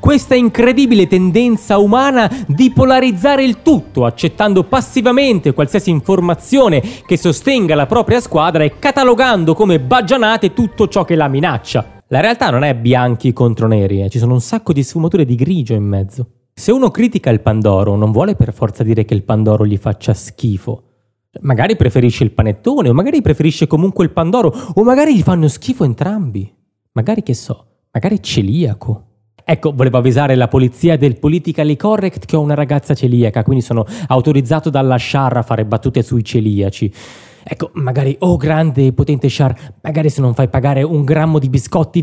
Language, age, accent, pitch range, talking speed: Italian, 30-49, native, 125-195 Hz, 170 wpm